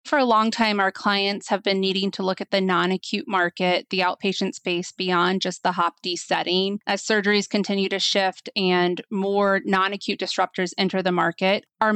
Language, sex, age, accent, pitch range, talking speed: English, female, 20-39, American, 190-215 Hz, 180 wpm